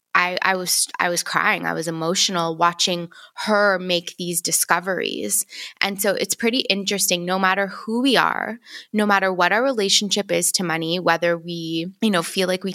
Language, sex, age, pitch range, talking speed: English, female, 20-39, 175-215 Hz, 185 wpm